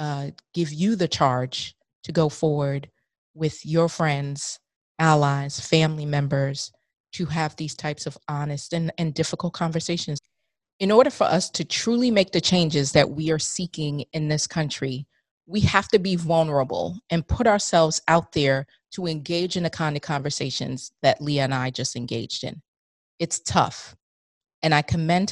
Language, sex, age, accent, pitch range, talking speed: English, female, 30-49, American, 145-180 Hz, 165 wpm